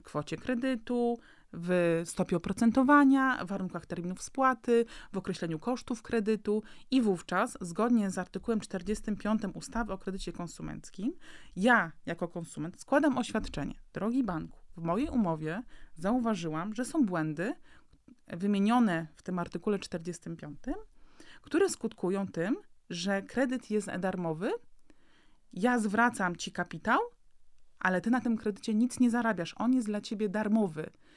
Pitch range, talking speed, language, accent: 180-240 Hz, 130 wpm, Polish, native